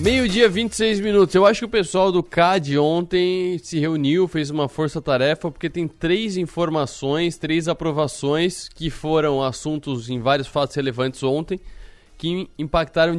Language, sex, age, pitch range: Portuguese, male, 20-39, 130-165 Hz